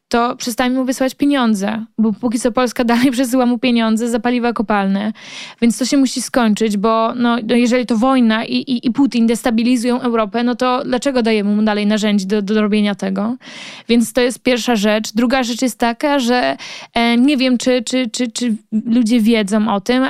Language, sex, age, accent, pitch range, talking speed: Polish, female, 20-39, native, 230-255 Hz, 175 wpm